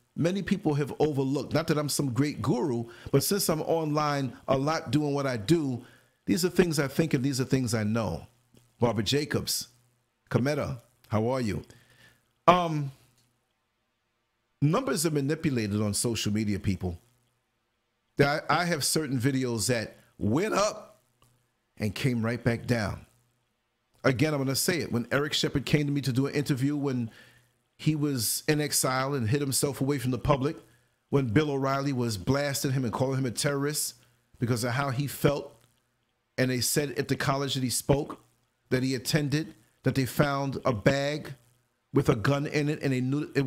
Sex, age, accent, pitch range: male, 40-59, American, 120-150 Hz